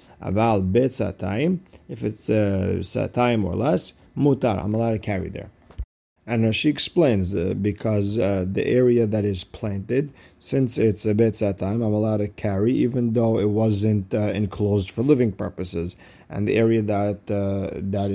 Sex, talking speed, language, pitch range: male, 160 wpm, English, 100-120 Hz